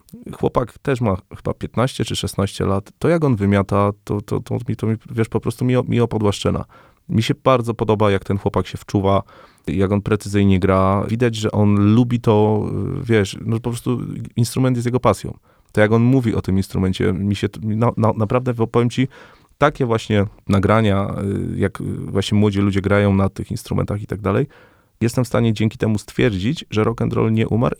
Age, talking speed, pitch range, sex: 30-49, 195 wpm, 95-115 Hz, male